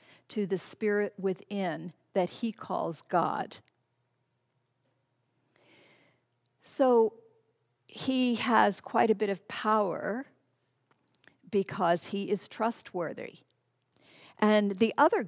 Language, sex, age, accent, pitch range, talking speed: English, female, 50-69, American, 185-220 Hz, 90 wpm